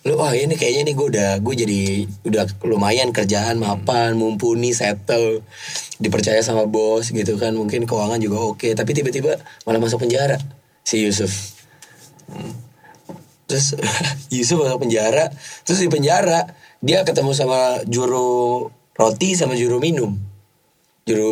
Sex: male